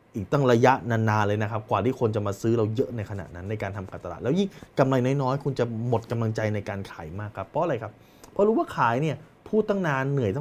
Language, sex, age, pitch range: Thai, male, 20-39, 105-145 Hz